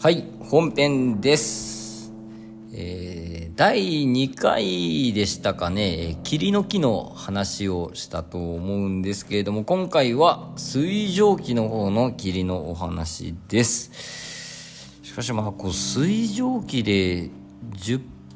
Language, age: Japanese, 50-69